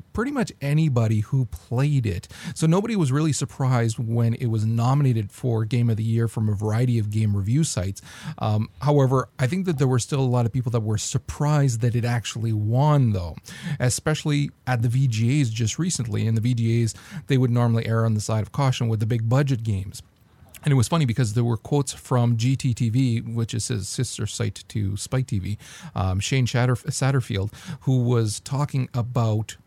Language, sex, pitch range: English, male, 115-140 Hz